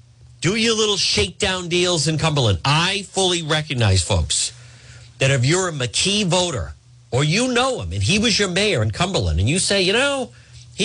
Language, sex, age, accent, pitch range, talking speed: English, male, 50-69, American, 120-170 Hz, 190 wpm